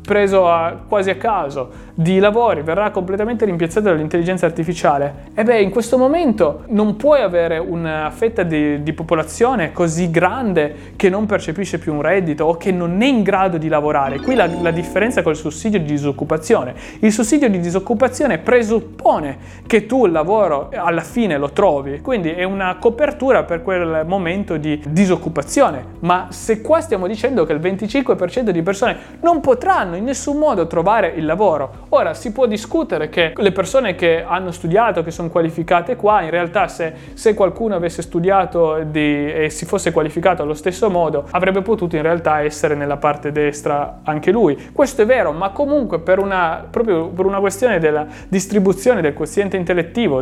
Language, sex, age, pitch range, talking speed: Italian, male, 30-49, 165-220 Hz, 170 wpm